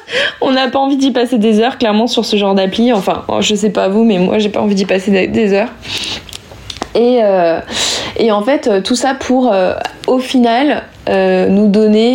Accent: French